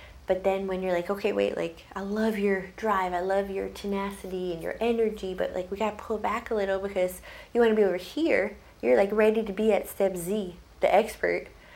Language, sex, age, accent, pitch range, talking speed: English, female, 20-39, American, 180-210 Hz, 220 wpm